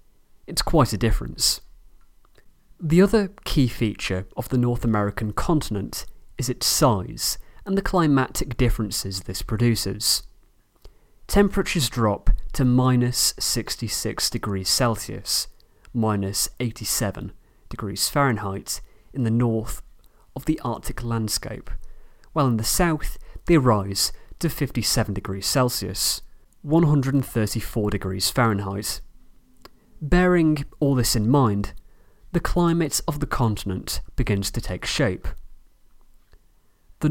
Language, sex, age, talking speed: English, male, 30-49, 110 wpm